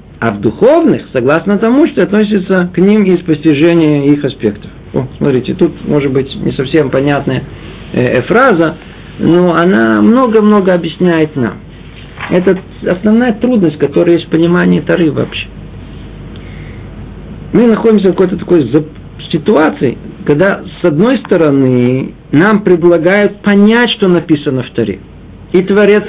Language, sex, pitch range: Russian, male, 155-200 Hz